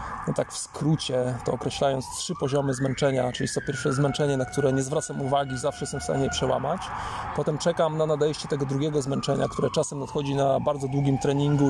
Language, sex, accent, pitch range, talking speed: Polish, male, native, 130-145 Hz, 195 wpm